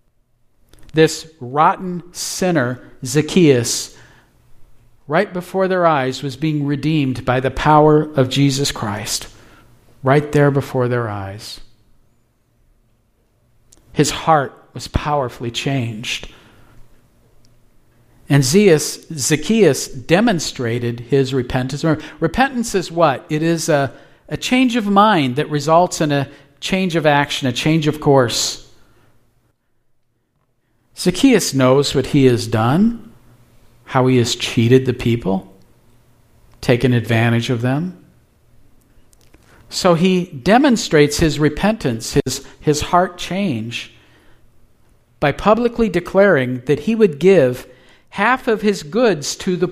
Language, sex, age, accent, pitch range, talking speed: English, male, 50-69, American, 120-160 Hz, 110 wpm